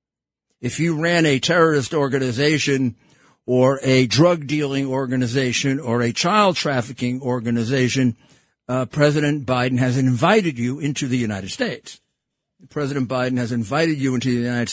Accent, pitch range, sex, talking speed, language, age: American, 125-150 Hz, male, 130 wpm, English, 60-79